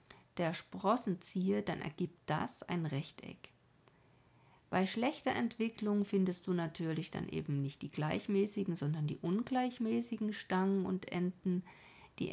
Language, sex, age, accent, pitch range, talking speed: German, female, 50-69, German, 155-200 Hz, 120 wpm